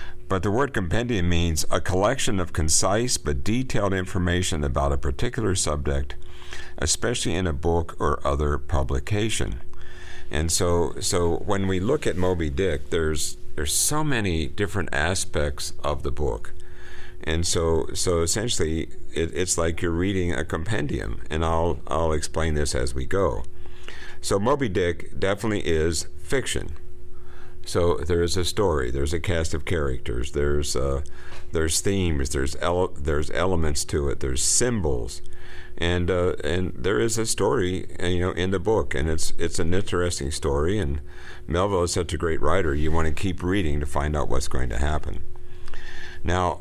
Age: 50-69